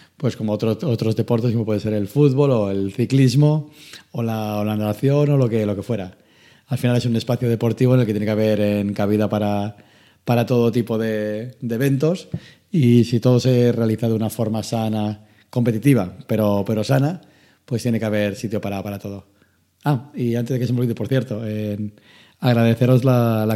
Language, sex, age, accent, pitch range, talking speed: Spanish, male, 30-49, Spanish, 105-125 Hz, 200 wpm